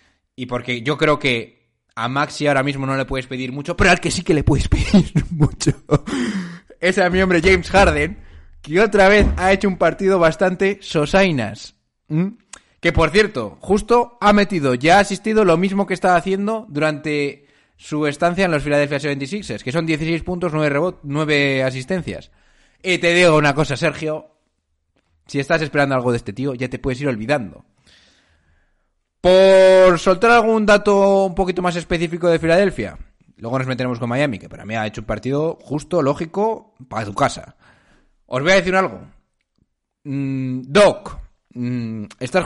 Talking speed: 170 wpm